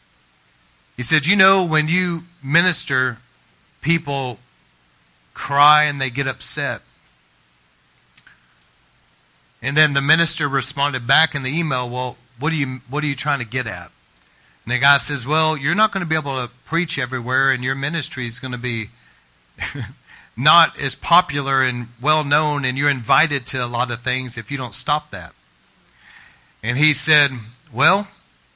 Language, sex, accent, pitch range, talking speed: English, male, American, 120-155 Hz, 155 wpm